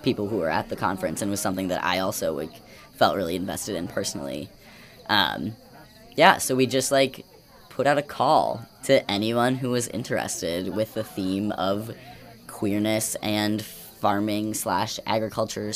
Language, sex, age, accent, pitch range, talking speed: English, female, 10-29, American, 100-120 Hz, 155 wpm